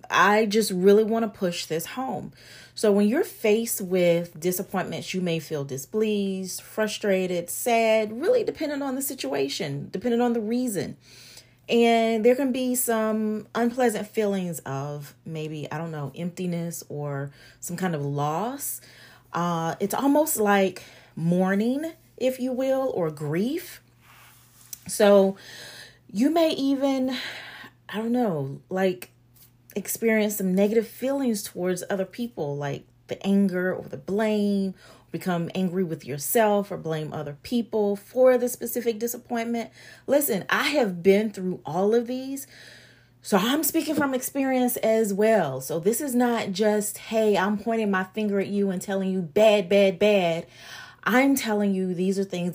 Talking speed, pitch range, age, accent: 145 wpm, 165-230 Hz, 30-49, American